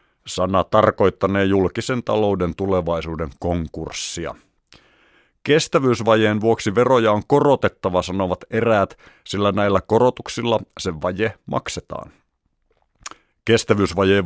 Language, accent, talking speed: Finnish, native, 85 wpm